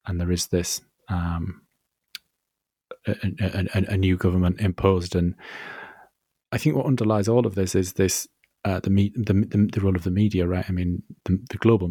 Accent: British